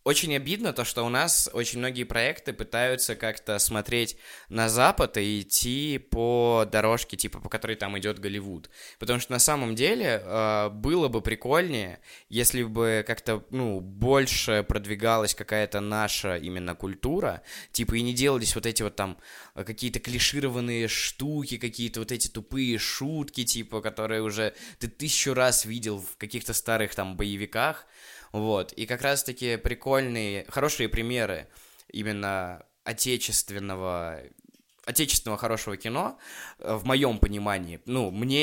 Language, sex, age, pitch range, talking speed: Russian, male, 20-39, 105-125 Hz, 135 wpm